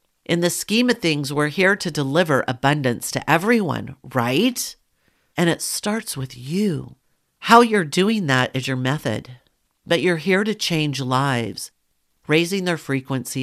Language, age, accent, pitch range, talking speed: English, 50-69, American, 130-175 Hz, 150 wpm